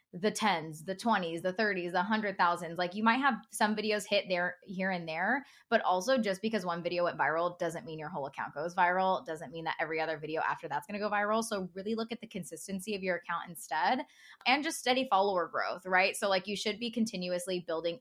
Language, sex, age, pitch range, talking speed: English, female, 10-29, 175-225 Hz, 235 wpm